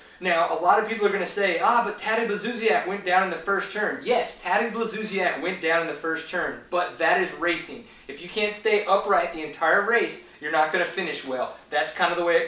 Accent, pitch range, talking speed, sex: American, 155-195 Hz, 250 wpm, male